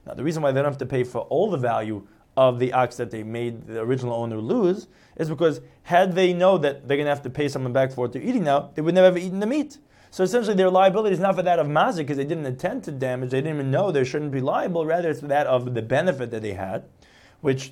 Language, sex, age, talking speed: English, male, 30-49, 285 wpm